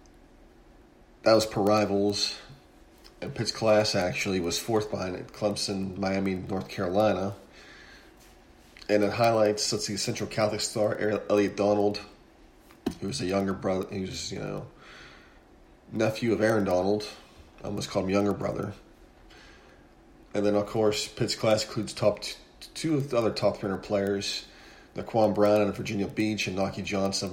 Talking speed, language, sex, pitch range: 150 wpm, English, male, 100-110 Hz